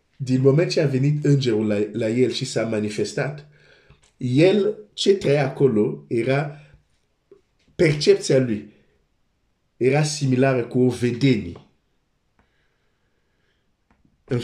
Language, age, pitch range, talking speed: Romanian, 50-69, 115-145 Hz, 100 wpm